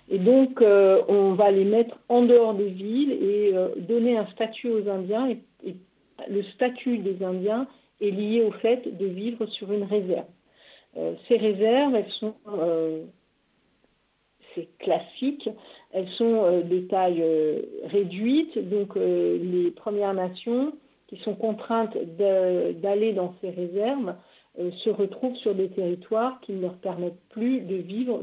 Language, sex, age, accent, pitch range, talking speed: French, female, 50-69, French, 190-245 Hz, 155 wpm